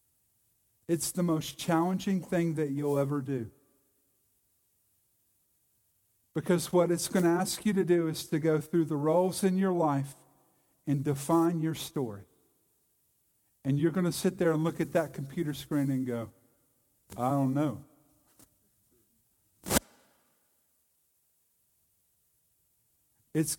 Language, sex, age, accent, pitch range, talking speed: English, male, 50-69, American, 130-175 Hz, 125 wpm